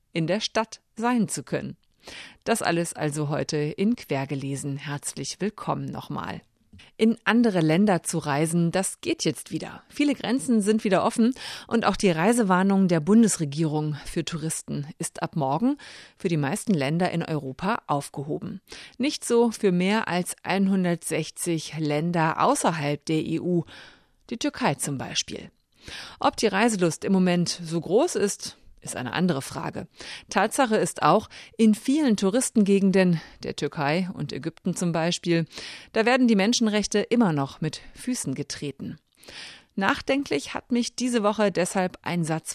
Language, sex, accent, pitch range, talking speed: German, female, German, 155-220 Hz, 145 wpm